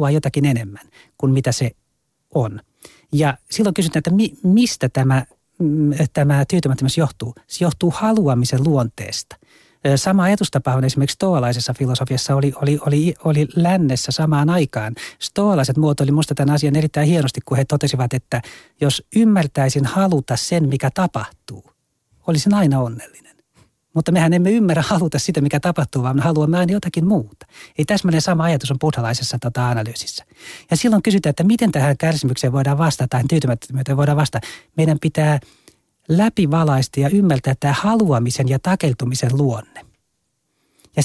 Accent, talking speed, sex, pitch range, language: native, 150 wpm, male, 130-170 Hz, Finnish